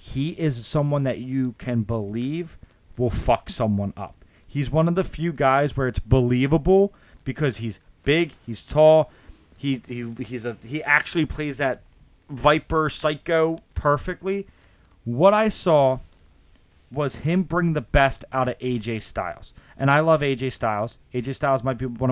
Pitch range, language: 115-150 Hz, English